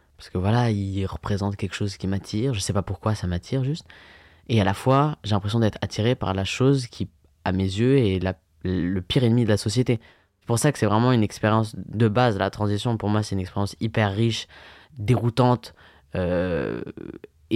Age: 20-39